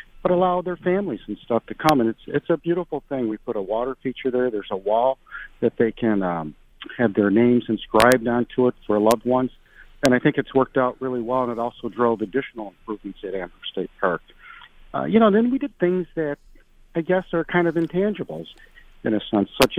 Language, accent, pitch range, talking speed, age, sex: English, American, 115-140 Hz, 220 wpm, 50-69, male